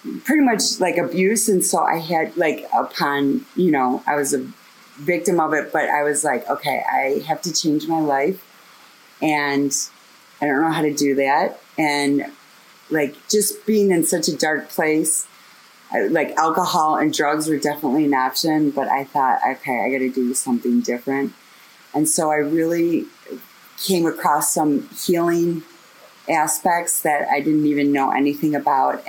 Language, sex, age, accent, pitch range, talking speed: English, female, 30-49, American, 145-185 Hz, 165 wpm